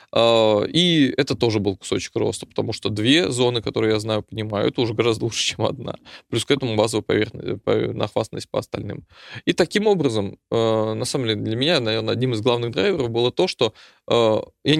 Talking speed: 185 wpm